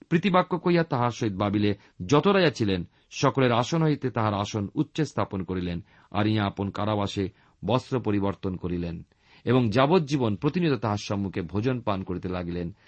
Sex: male